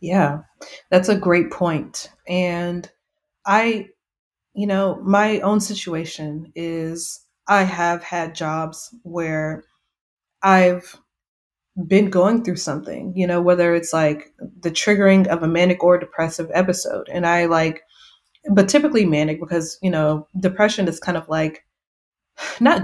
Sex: female